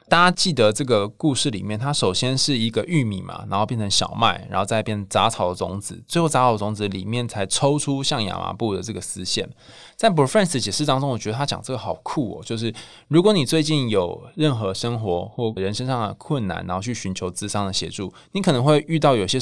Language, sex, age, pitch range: Chinese, male, 20-39, 105-140 Hz